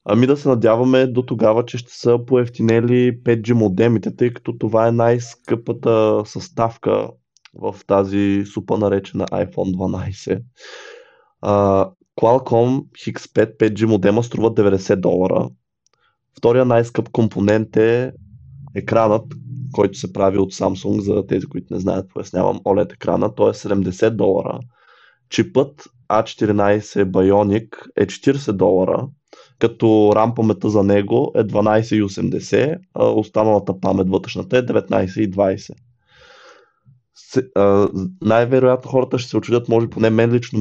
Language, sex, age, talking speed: Bulgarian, male, 20-39, 125 wpm